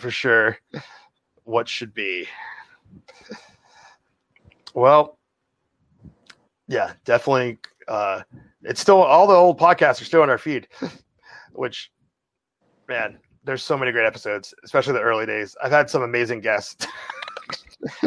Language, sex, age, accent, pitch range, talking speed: English, male, 30-49, American, 120-155 Hz, 120 wpm